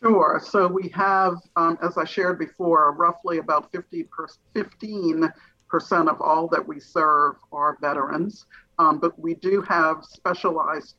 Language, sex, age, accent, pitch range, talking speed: English, male, 50-69, American, 150-180 Hz, 135 wpm